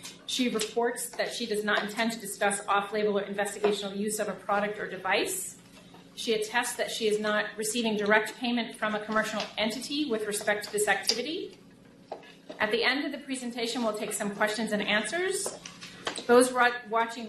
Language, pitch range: English, 205-225 Hz